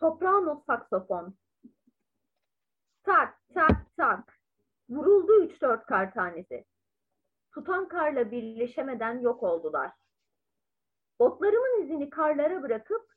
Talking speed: 90 wpm